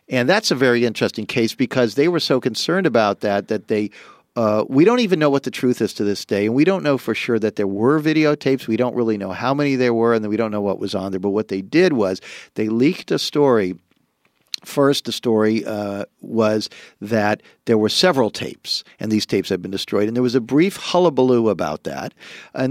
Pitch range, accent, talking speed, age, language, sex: 110-140 Hz, American, 230 wpm, 50-69, English, male